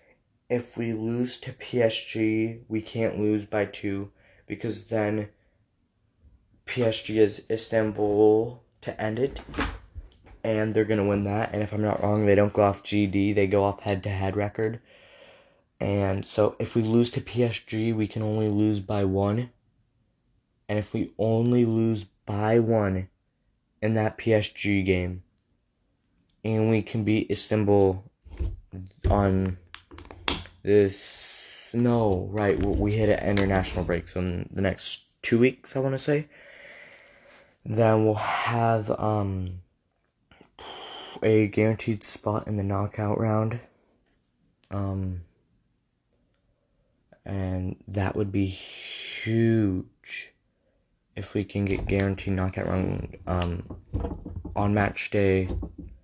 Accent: American